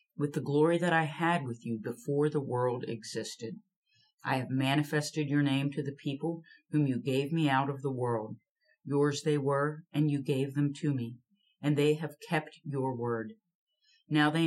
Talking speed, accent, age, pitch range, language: 185 wpm, American, 40-59, 135-165 Hz, English